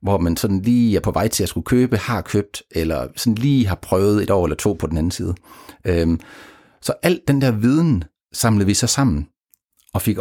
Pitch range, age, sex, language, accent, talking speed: 85-120 Hz, 30-49, male, Danish, native, 225 wpm